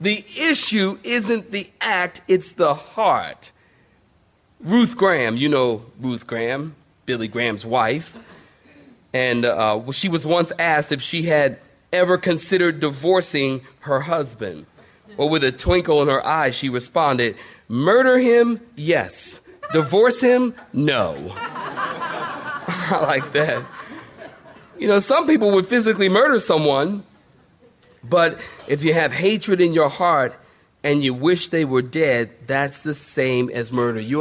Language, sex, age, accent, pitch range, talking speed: English, male, 40-59, American, 130-190 Hz, 135 wpm